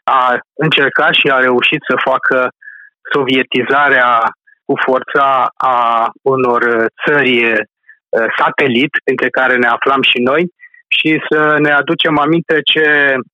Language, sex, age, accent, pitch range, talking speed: Romanian, male, 30-49, native, 125-155 Hz, 115 wpm